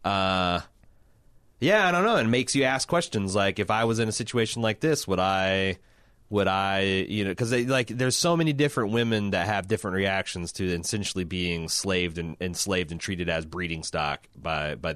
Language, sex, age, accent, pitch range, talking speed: English, male, 30-49, American, 90-115 Hz, 195 wpm